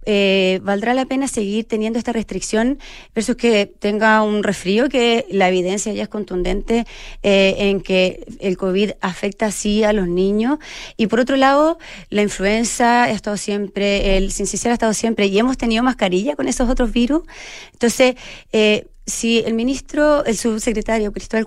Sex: female